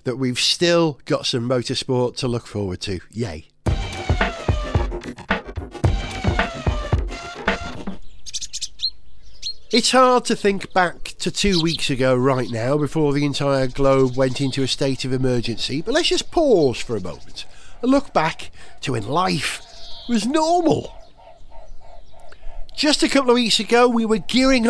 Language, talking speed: English, 135 wpm